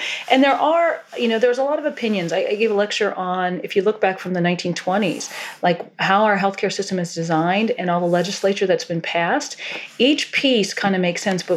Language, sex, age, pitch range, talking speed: English, female, 40-59, 175-205 Hz, 230 wpm